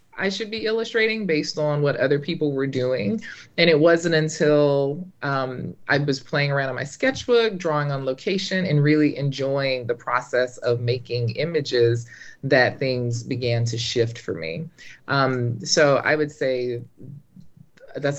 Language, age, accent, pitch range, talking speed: English, 20-39, American, 130-180 Hz, 155 wpm